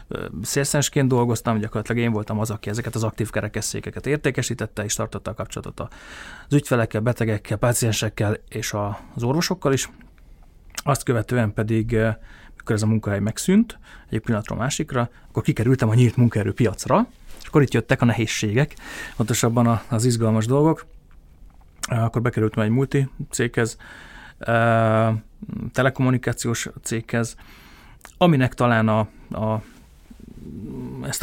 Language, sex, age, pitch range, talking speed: Hungarian, male, 30-49, 110-125 Hz, 120 wpm